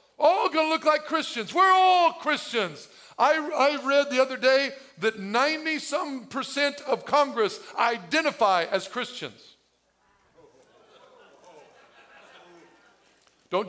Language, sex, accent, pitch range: English, male, American, 210-270 Hz